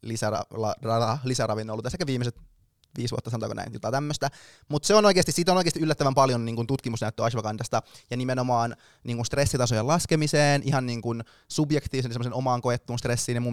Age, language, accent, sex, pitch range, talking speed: 20-39, Finnish, native, male, 115-135 Hz, 160 wpm